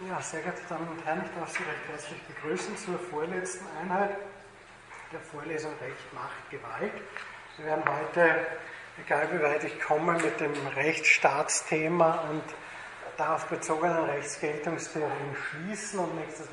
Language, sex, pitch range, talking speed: German, male, 145-165 Hz, 140 wpm